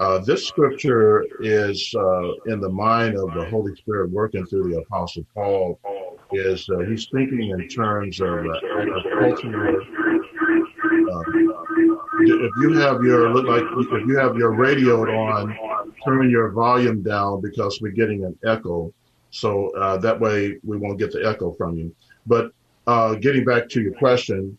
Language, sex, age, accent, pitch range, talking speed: English, male, 50-69, American, 100-120 Hz, 165 wpm